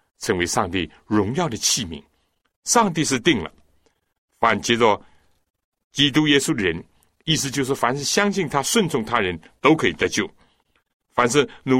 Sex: male